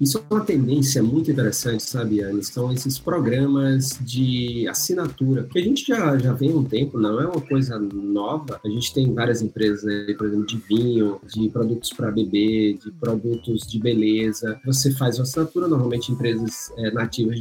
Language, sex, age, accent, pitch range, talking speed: Portuguese, male, 40-59, Brazilian, 115-150 Hz, 185 wpm